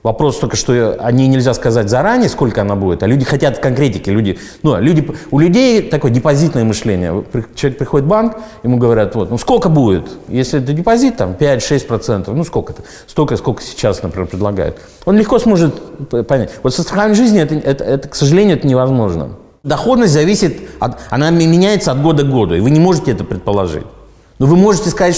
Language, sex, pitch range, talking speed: Russian, male, 110-170 Hz, 190 wpm